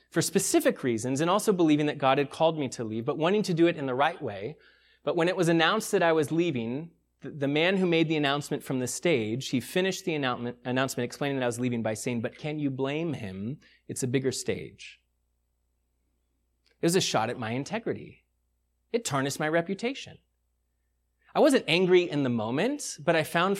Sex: male